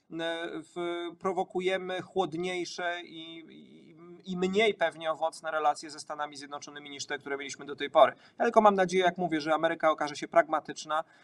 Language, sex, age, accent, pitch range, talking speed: Polish, male, 40-59, native, 140-160 Hz, 165 wpm